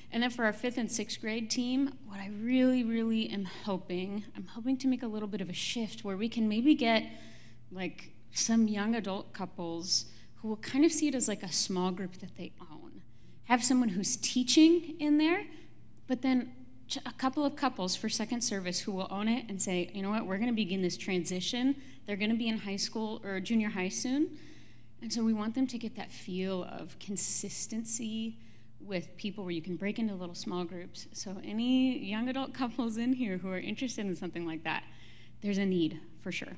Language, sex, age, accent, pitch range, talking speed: English, female, 30-49, American, 180-230 Hz, 210 wpm